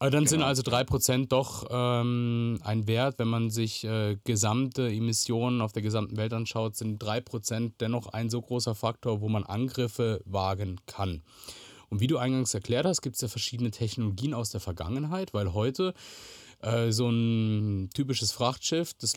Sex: male